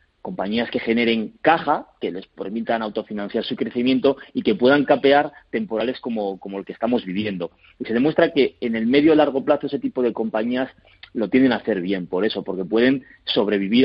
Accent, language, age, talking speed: Spanish, Spanish, 30-49, 195 wpm